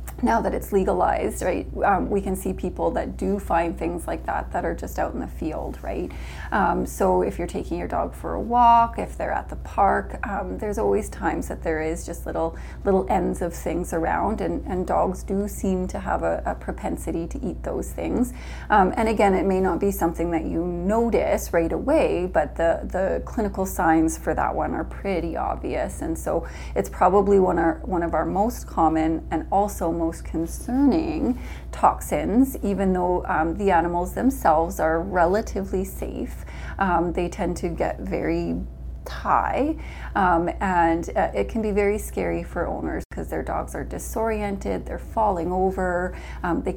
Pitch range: 165-210 Hz